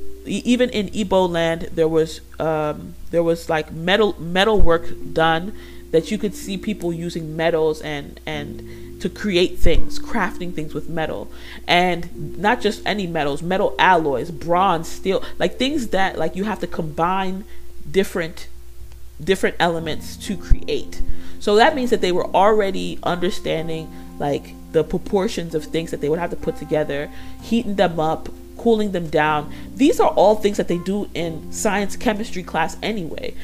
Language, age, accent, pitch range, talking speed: English, 40-59, American, 155-205 Hz, 160 wpm